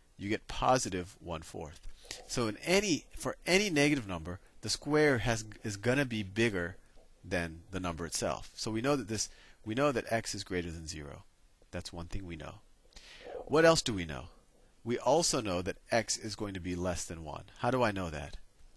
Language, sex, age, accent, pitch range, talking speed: English, male, 40-59, American, 85-120 Hz, 205 wpm